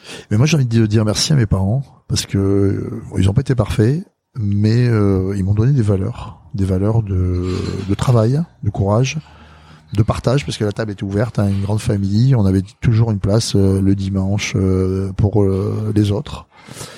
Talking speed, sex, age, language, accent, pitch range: 200 wpm, male, 30-49, French, French, 95-120 Hz